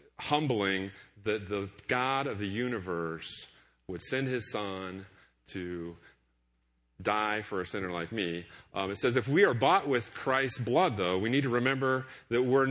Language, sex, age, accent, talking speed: English, male, 40-59, American, 165 wpm